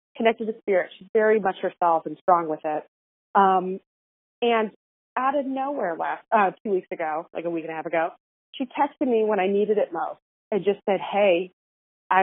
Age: 30-49